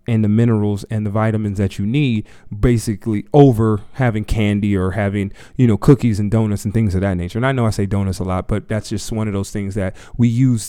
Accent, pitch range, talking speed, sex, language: American, 100-120 Hz, 240 wpm, male, English